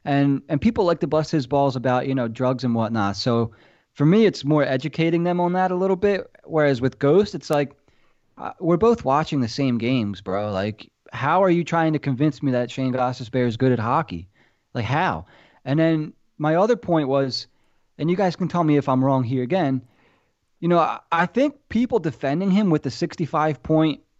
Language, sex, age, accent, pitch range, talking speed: English, male, 20-39, American, 130-175 Hz, 210 wpm